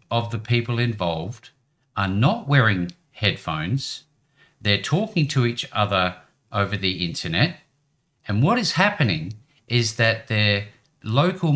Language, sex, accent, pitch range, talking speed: English, male, Australian, 105-145 Hz, 125 wpm